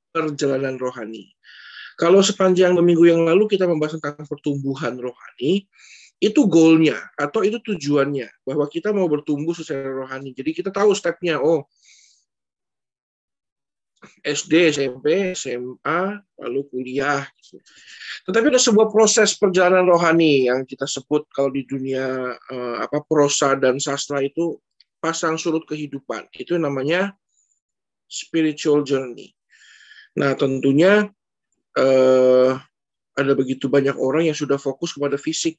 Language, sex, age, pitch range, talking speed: Indonesian, male, 20-39, 135-180 Hz, 120 wpm